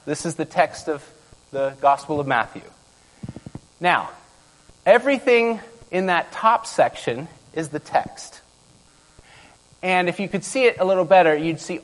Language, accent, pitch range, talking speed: English, American, 150-205 Hz, 145 wpm